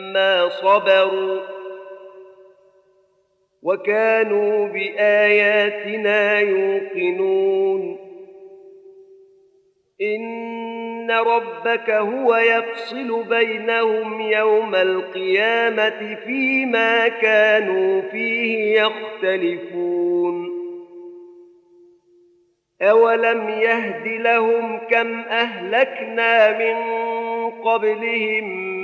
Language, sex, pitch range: Arabic, male, 200-230 Hz